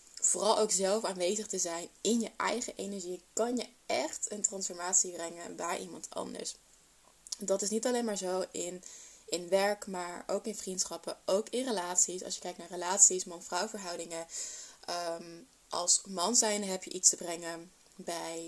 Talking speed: 170 wpm